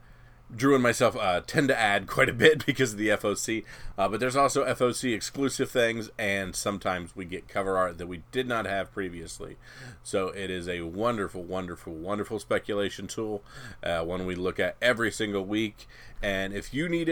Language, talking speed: English, 190 wpm